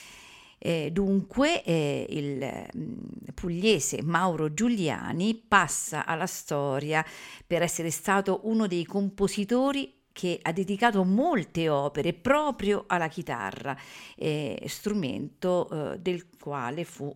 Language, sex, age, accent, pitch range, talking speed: Italian, female, 50-69, native, 155-205 Hz, 90 wpm